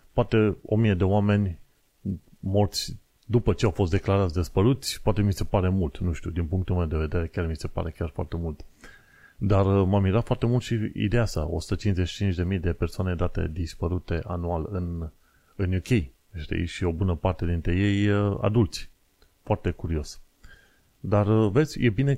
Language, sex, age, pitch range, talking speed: Romanian, male, 30-49, 85-105 Hz, 170 wpm